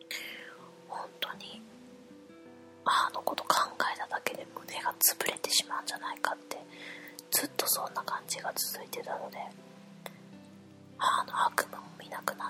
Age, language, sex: 20-39, Japanese, female